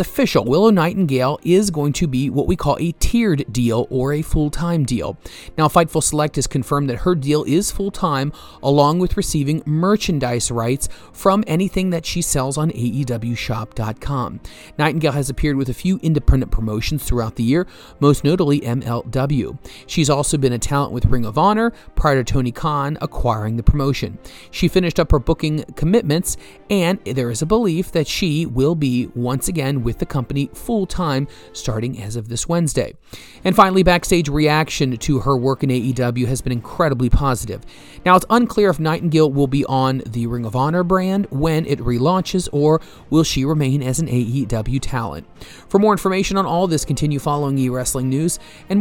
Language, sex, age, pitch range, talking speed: English, male, 40-59, 125-170 Hz, 175 wpm